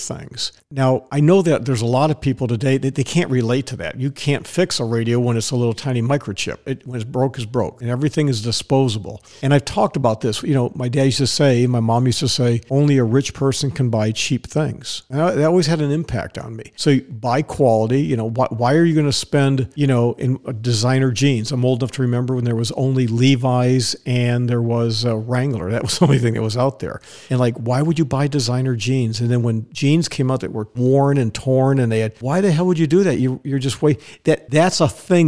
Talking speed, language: 255 wpm, English